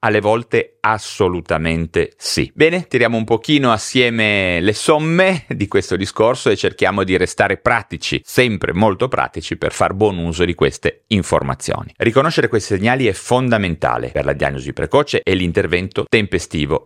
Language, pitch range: Italian, 85-110 Hz